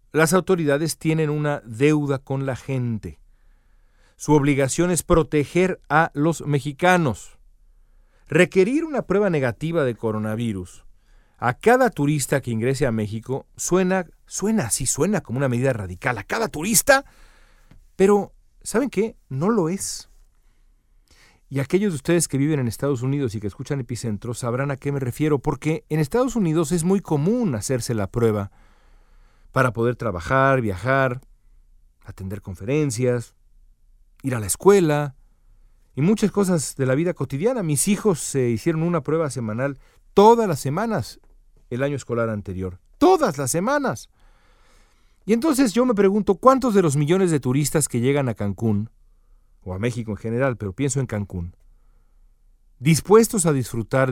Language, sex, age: Spanish, male, 40-59